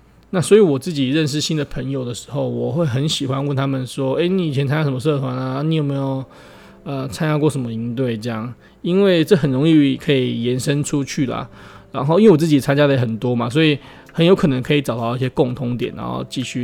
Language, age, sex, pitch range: Chinese, 20-39, male, 125-155 Hz